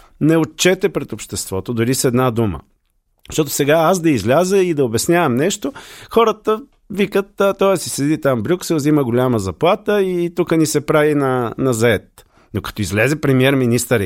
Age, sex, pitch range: 40-59, male, 115-155 Hz